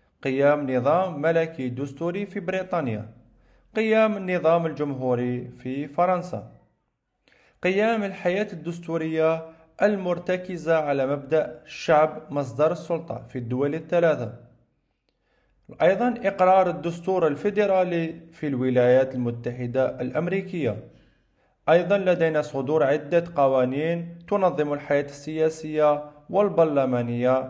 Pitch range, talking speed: 135-175 Hz, 85 wpm